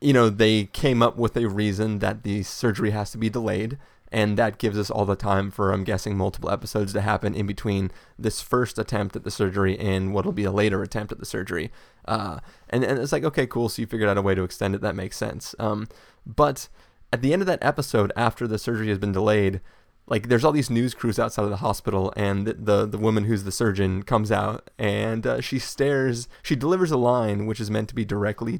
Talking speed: 240 wpm